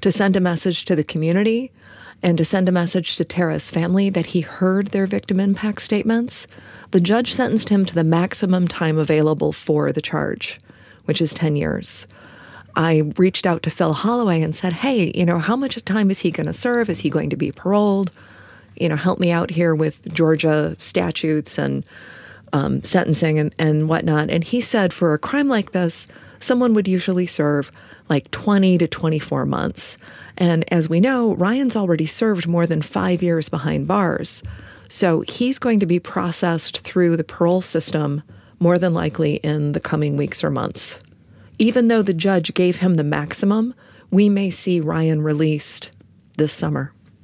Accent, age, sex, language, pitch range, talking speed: American, 30-49, female, English, 155-195 Hz, 180 wpm